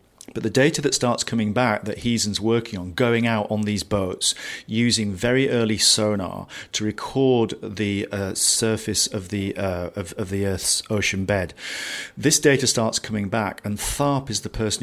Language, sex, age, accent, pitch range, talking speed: English, male, 40-59, British, 100-115 Hz, 180 wpm